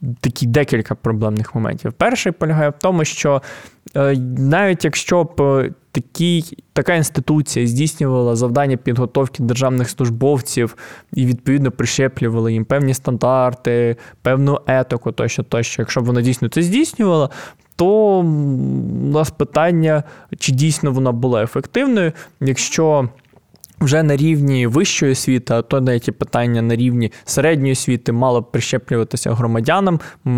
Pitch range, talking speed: 120-155 Hz, 120 wpm